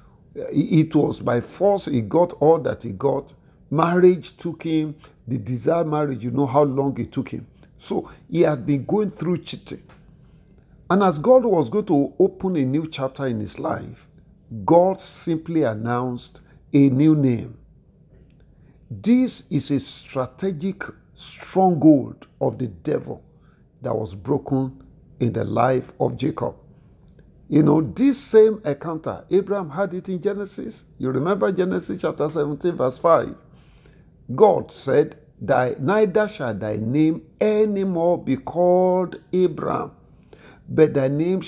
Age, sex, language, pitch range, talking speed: 50-69, male, English, 130-180 Hz, 140 wpm